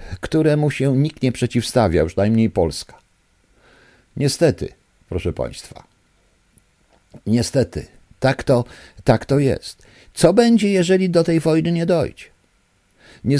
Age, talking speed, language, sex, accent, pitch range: 50-69, 115 wpm, Polish, male, native, 100-145 Hz